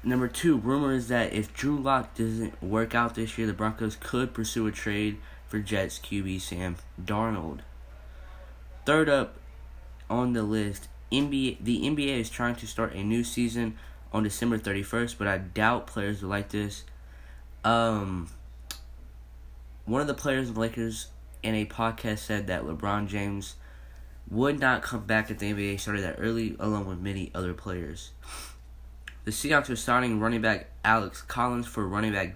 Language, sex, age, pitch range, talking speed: English, male, 10-29, 90-115 Hz, 165 wpm